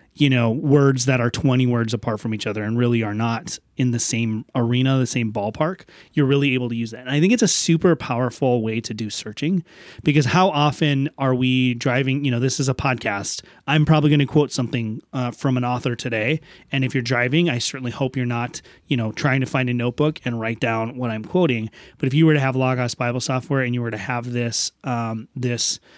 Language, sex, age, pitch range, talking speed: English, male, 30-49, 120-145 Hz, 235 wpm